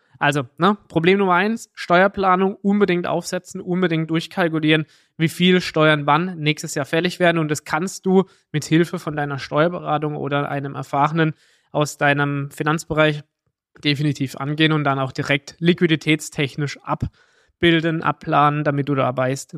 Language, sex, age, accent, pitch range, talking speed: German, male, 20-39, German, 150-180 Hz, 140 wpm